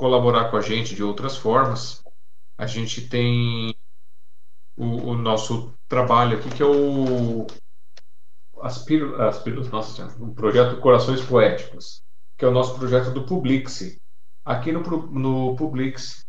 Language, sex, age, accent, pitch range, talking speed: Portuguese, male, 40-59, Brazilian, 110-135 Hz, 135 wpm